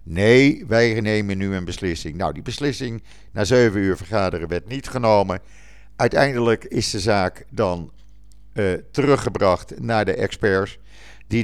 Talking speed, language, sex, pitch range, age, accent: 140 wpm, Dutch, male, 90-115 Hz, 50-69, Dutch